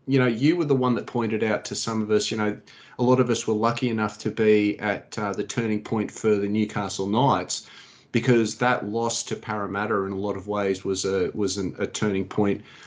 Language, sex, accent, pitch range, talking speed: English, male, Australian, 105-125 Hz, 235 wpm